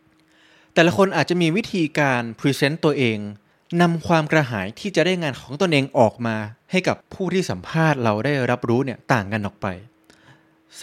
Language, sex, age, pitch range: Thai, male, 20-39, 110-150 Hz